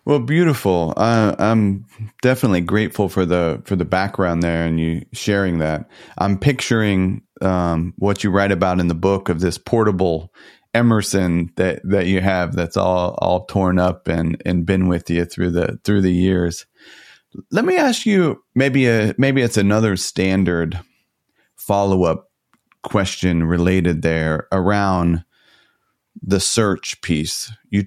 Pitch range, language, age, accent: 90-110 Hz, English, 30-49, American